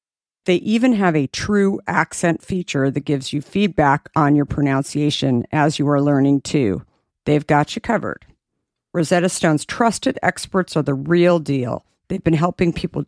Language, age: English, 50-69